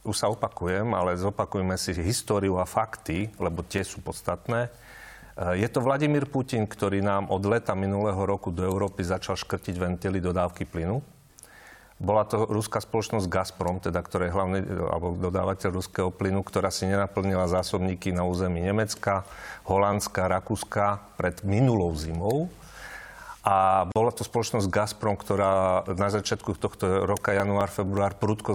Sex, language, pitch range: male, Slovak, 90-105 Hz